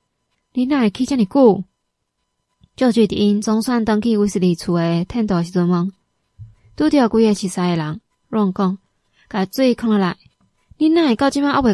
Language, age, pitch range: Chinese, 20-39, 190-225 Hz